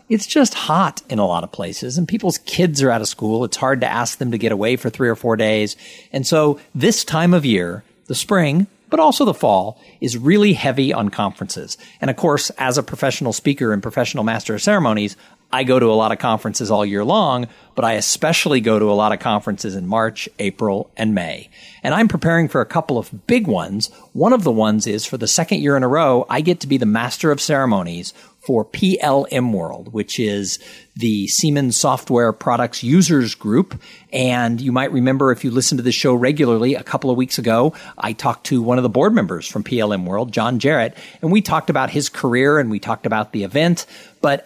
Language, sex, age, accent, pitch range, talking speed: English, male, 50-69, American, 115-160 Hz, 220 wpm